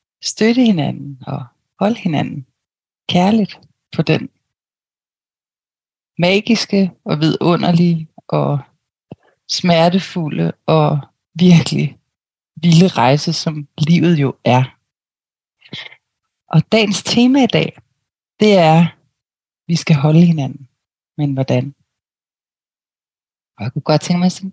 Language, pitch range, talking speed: Danish, 145-175 Hz, 105 wpm